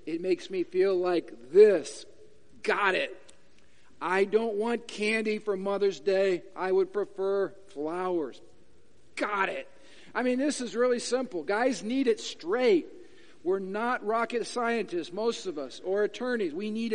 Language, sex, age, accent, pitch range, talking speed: English, male, 50-69, American, 225-370 Hz, 150 wpm